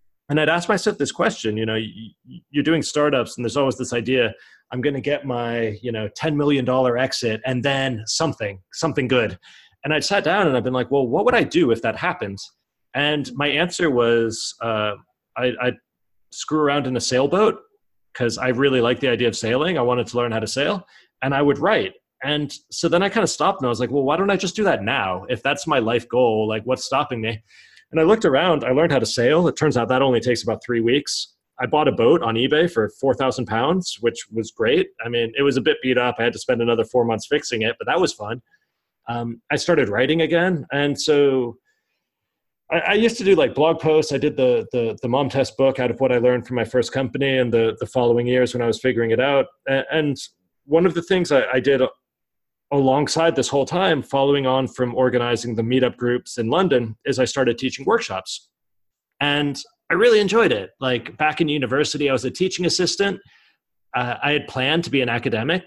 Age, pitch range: 30-49, 120-150 Hz